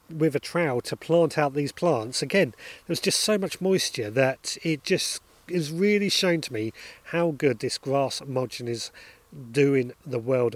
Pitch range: 125-165 Hz